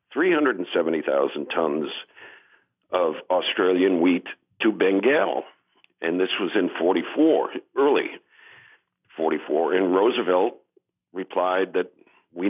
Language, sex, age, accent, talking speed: English, male, 50-69, American, 90 wpm